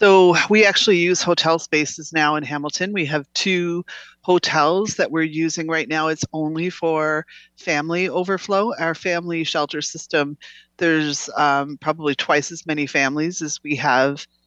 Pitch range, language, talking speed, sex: 140-170 Hz, English, 155 wpm, female